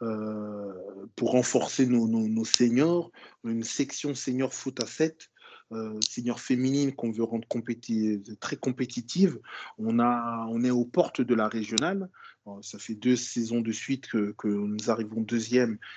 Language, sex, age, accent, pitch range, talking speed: French, male, 20-39, French, 115-135 Hz, 160 wpm